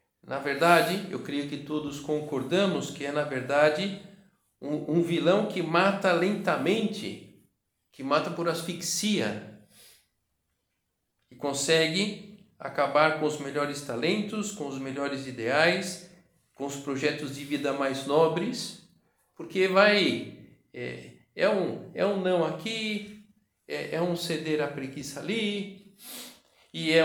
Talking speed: 125 wpm